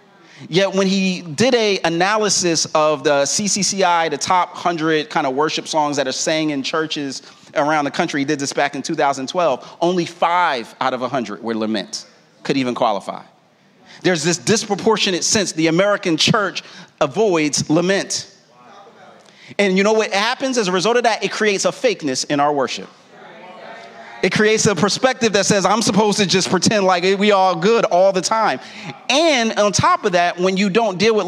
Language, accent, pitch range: English, American, 155-205 Hz